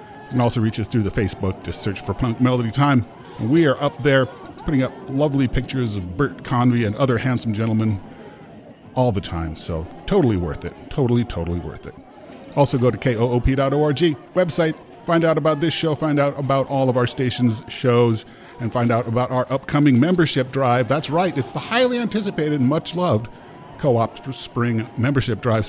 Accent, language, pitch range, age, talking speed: American, English, 110-145 Hz, 40-59, 180 wpm